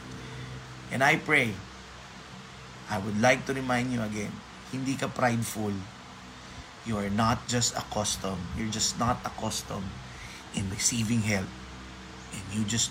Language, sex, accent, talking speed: Filipino, male, native, 130 wpm